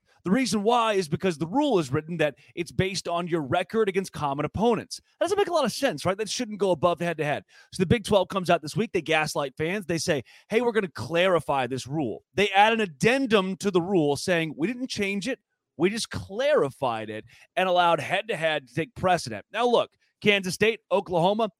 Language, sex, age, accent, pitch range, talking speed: English, male, 30-49, American, 155-210 Hz, 220 wpm